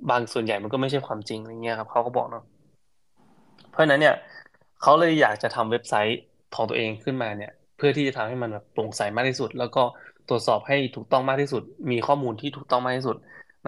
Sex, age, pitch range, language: male, 20-39, 115-145 Hz, Thai